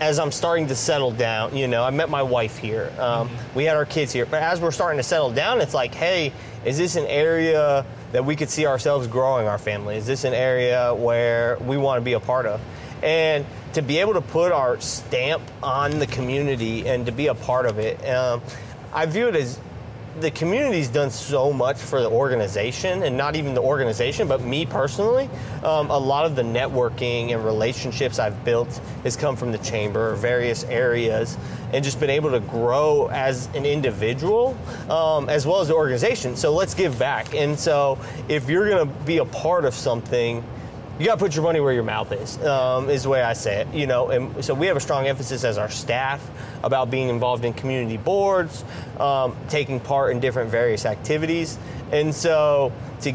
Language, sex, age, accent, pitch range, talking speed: English, male, 30-49, American, 120-150 Hz, 210 wpm